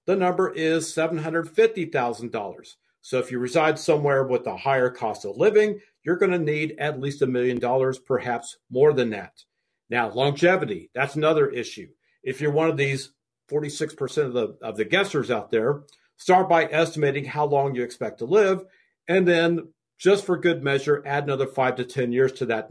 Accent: American